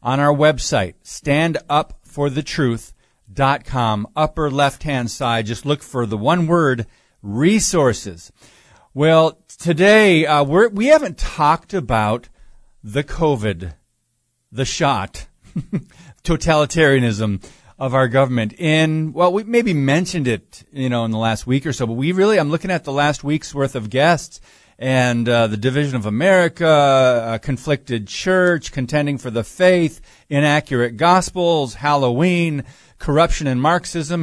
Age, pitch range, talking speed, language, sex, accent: 40-59, 125-165 Hz, 130 wpm, English, male, American